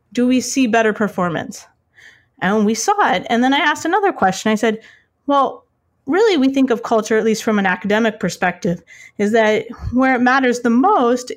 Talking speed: 190 wpm